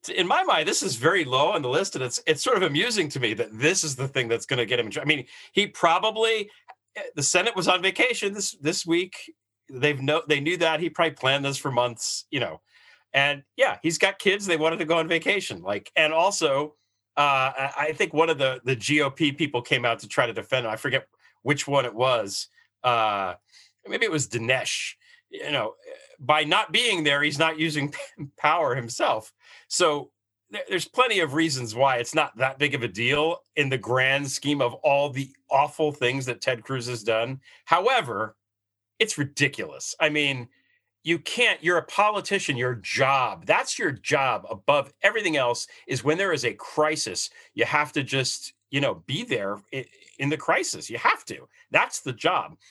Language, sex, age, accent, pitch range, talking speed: English, male, 40-59, American, 130-165 Hz, 195 wpm